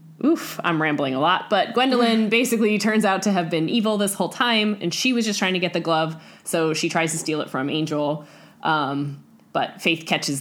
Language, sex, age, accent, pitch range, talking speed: English, female, 10-29, American, 150-185 Hz, 220 wpm